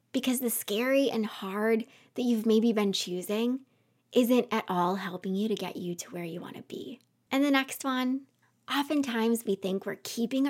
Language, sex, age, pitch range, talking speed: English, female, 20-39, 195-260 Hz, 190 wpm